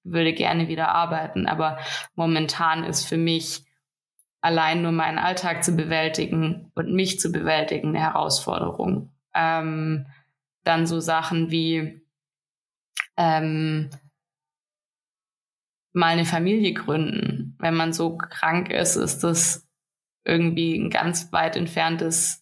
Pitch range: 155-175 Hz